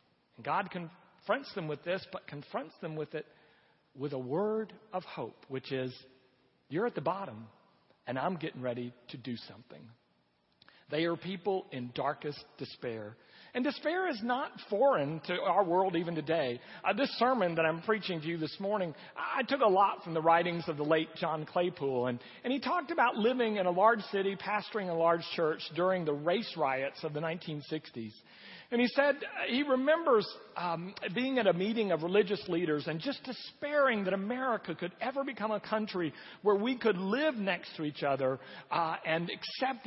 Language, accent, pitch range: English, American, 150-210 Hz